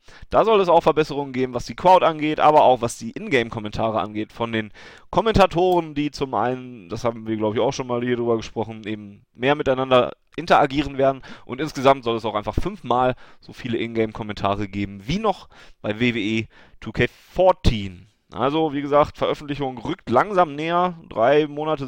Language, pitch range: German, 115-155 Hz